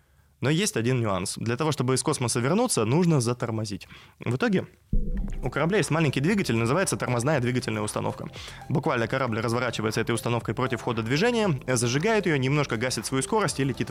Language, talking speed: Russian, 170 wpm